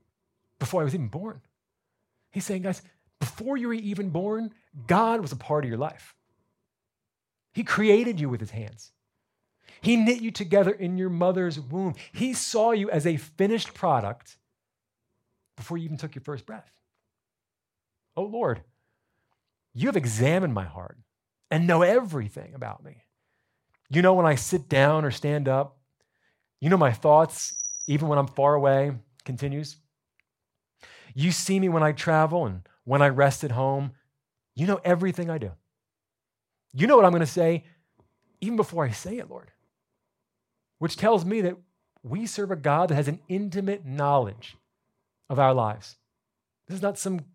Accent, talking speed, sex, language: American, 165 wpm, male, English